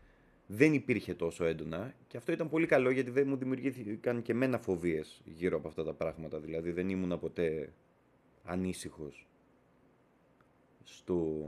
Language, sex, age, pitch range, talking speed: Greek, male, 30-49, 90-130 Hz, 140 wpm